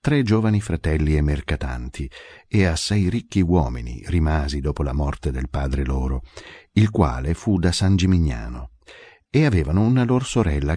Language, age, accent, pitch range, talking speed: Italian, 50-69, native, 70-95 Hz, 150 wpm